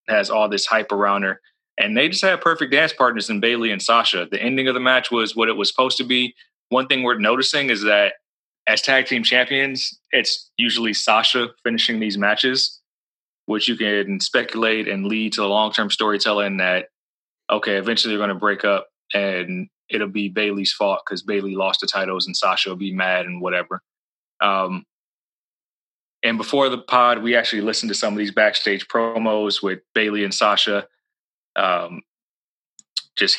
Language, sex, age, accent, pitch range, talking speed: English, male, 20-39, American, 100-125 Hz, 180 wpm